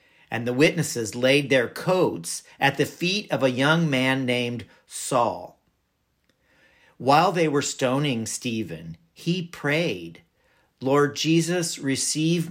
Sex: male